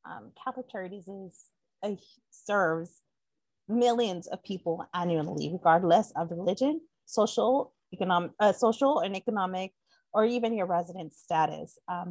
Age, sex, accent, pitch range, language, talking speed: 30-49, female, American, 170-225 Hz, English, 120 wpm